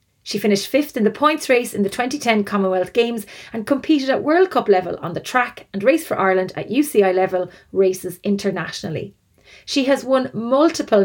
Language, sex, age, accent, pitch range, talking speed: English, female, 30-49, Irish, 200-265 Hz, 185 wpm